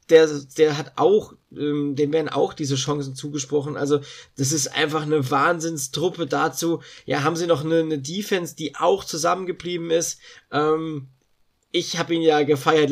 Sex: male